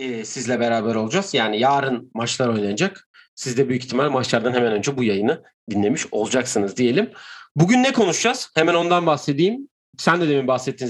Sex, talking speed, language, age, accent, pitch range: male, 160 wpm, Turkish, 40-59, native, 115-165 Hz